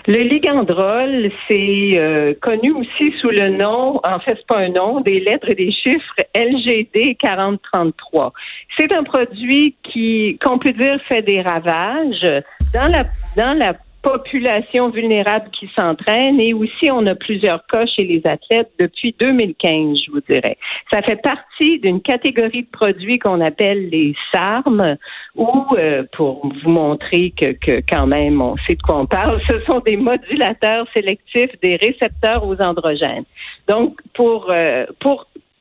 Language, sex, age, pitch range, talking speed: French, female, 50-69, 185-250 Hz, 155 wpm